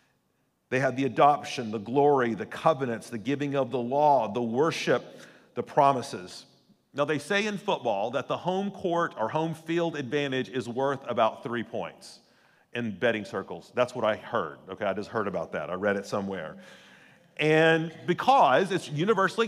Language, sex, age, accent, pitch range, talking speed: English, male, 40-59, American, 135-170 Hz, 175 wpm